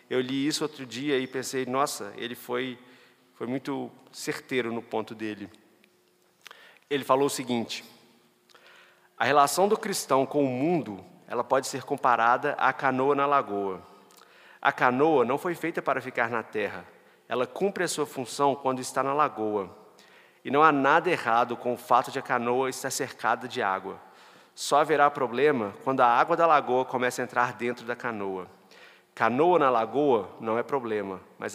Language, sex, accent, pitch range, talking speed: Portuguese, male, Brazilian, 120-140 Hz, 170 wpm